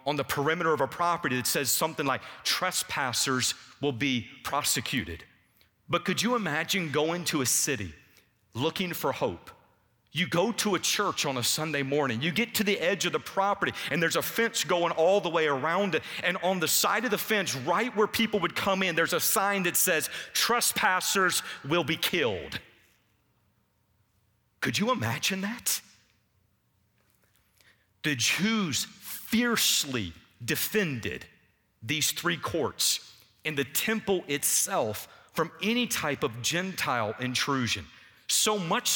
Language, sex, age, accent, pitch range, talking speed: English, male, 40-59, American, 140-200 Hz, 150 wpm